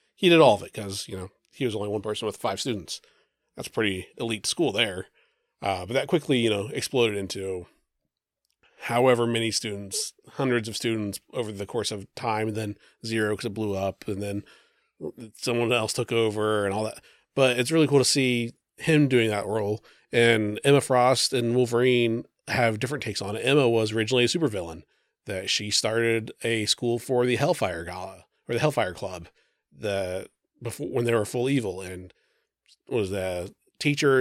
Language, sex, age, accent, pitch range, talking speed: English, male, 30-49, American, 110-140 Hz, 185 wpm